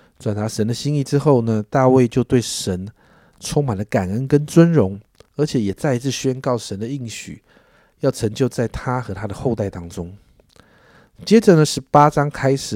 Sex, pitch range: male, 105-145 Hz